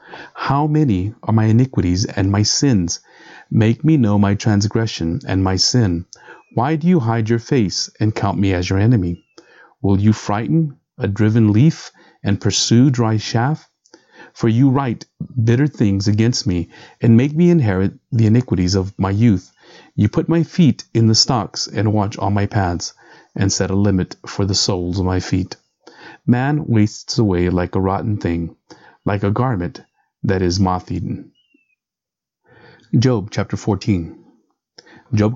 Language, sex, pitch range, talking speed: English, male, 95-120 Hz, 160 wpm